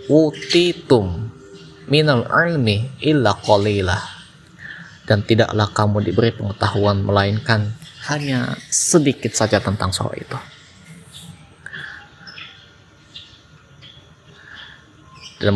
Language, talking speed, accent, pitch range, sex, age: Indonesian, 60 wpm, native, 105-130 Hz, male, 20-39